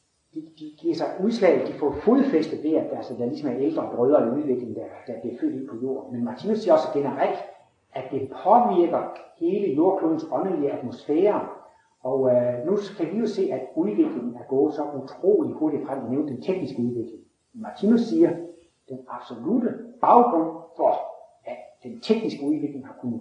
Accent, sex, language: native, male, Danish